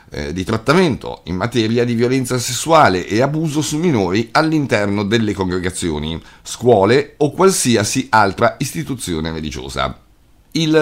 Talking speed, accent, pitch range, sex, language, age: 115 wpm, native, 95-140 Hz, male, Italian, 50-69